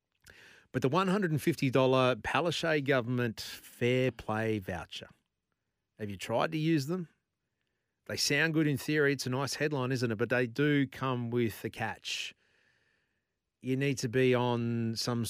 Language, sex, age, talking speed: English, male, 40-59, 150 wpm